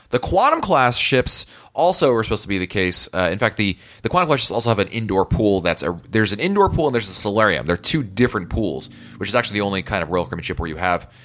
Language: English